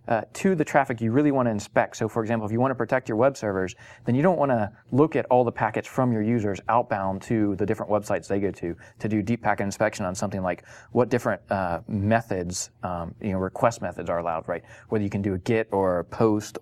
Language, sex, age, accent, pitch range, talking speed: English, male, 30-49, American, 100-125 Hz, 255 wpm